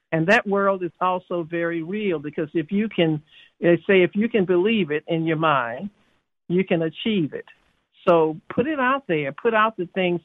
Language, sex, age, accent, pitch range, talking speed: English, male, 60-79, American, 155-180 Hz, 195 wpm